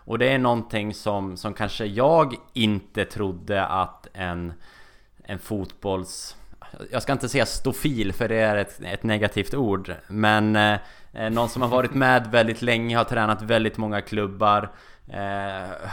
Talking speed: 155 wpm